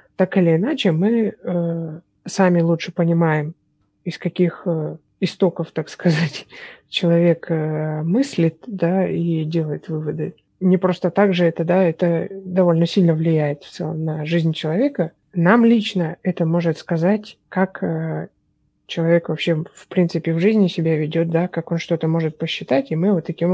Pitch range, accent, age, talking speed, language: 160-185 Hz, native, 30-49, 155 wpm, Russian